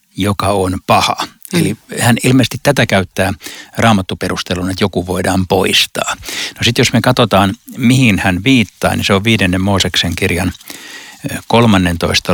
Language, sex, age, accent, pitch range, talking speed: Finnish, male, 60-79, native, 90-110 Hz, 135 wpm